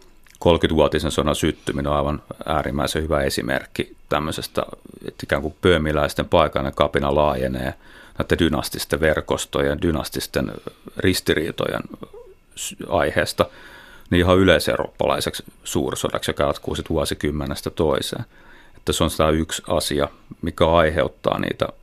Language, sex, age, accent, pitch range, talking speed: Finnish, male, 30-49, native, 75-95 Hz, 105 wpm